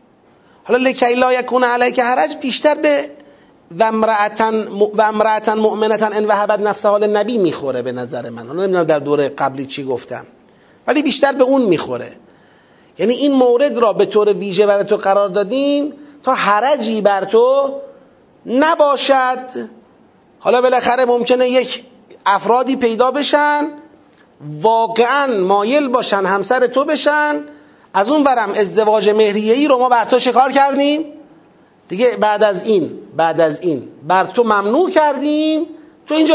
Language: Persian